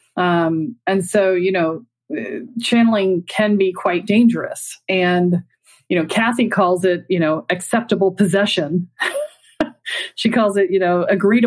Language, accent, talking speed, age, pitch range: English, American, 135 wpm, 40-59, 175-220 Hz